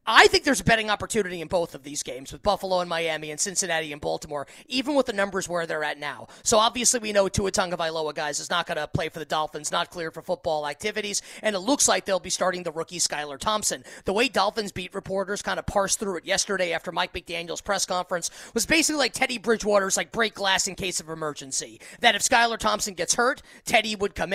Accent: American